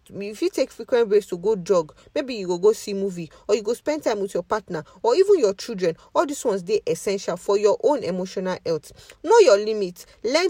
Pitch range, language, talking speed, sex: 185-310 Hz, English, 235 wpm, female